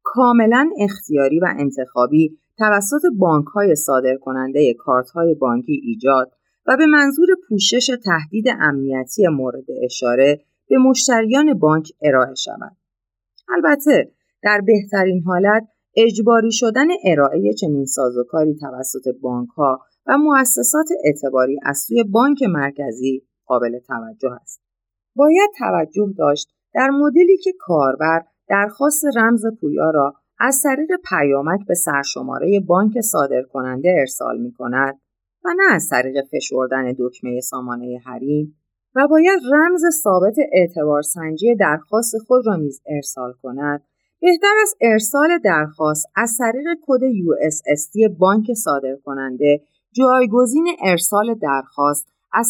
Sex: female